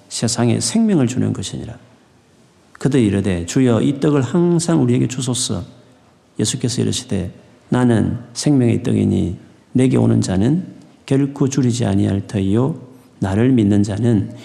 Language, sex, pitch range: Korean, male, 115-155 Hz